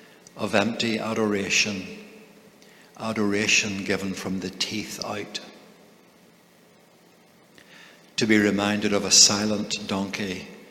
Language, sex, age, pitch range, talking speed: English, male, 60-79, 100-115 Hz, 90 wpm